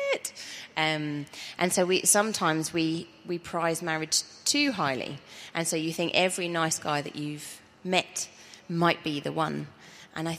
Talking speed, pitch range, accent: 155 wpm, 150-180 Hz, British